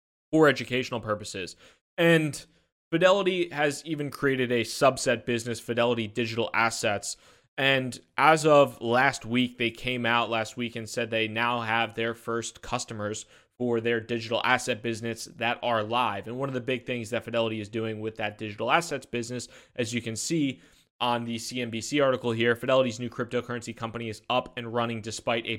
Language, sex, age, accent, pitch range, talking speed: English, male, 20-39, American, 115-130 Hz, 175 wpm